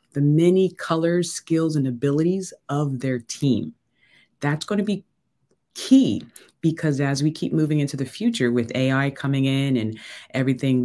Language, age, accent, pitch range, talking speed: English, 30-49, American, 120-150 Hz, 155 wpm